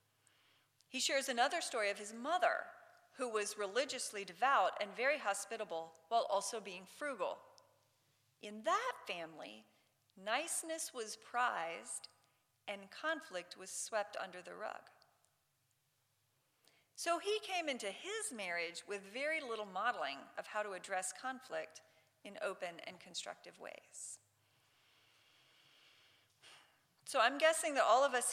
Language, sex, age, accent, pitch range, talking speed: English, female, 40-59, American, 210-315 Hz, 125 wpm